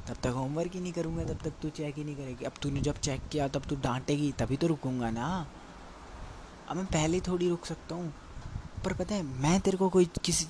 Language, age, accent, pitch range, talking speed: Hindi, 20-39, native, 115-155 Hz, 230 wpm